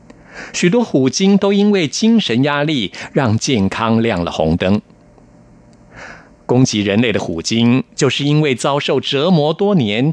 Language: Chinese